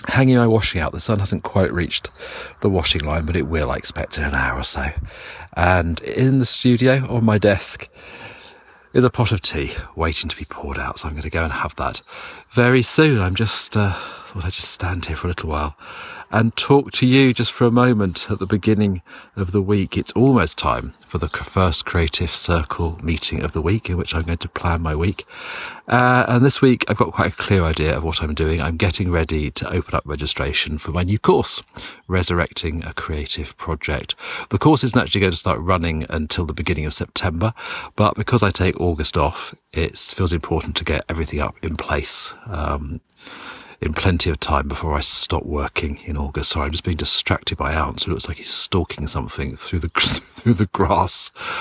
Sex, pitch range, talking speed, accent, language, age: male, 80-105 Hz, 210 wpm, British, English, 40-59